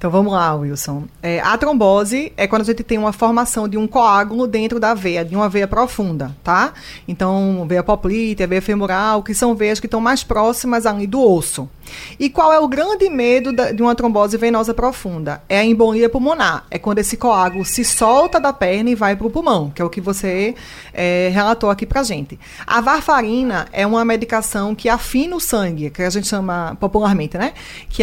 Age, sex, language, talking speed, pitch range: 20-39, female, Portuguese, 195 wpm, 195-245 Hz